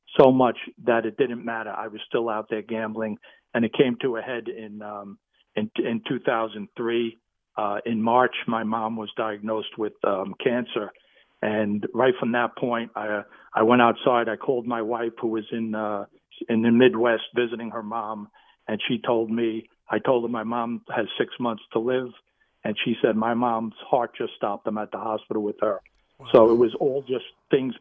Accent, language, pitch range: American, English, 110-125 Hz